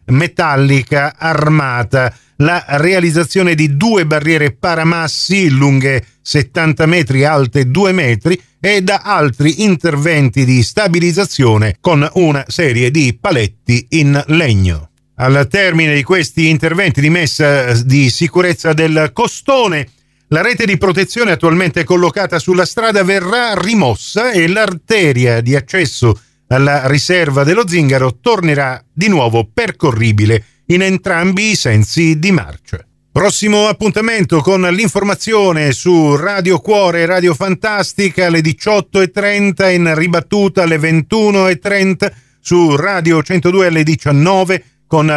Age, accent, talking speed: 50-69, native, 115 wpm